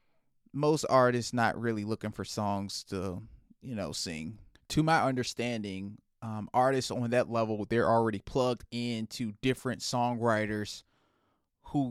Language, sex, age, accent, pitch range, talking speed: English, male, 20-39, American, 115-135 Hz, 130 wpm